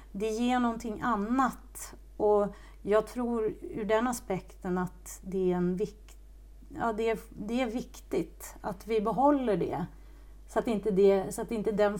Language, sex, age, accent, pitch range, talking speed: Swedish, female, 40-59, native, 185-225 Hz, 165 wpm